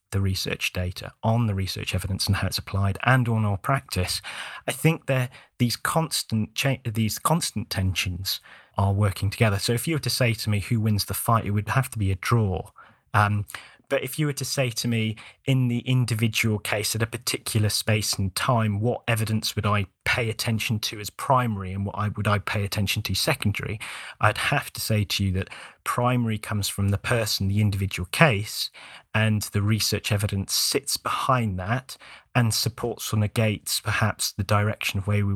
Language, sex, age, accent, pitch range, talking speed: English, male, 30-49, British, 100-125 Hz, 190 wpm